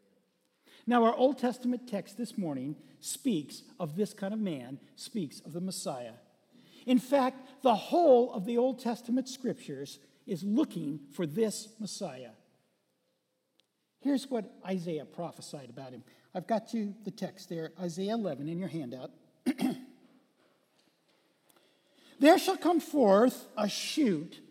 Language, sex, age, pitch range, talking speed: English, male, 60-79, 190-260 Hz, 130 wpm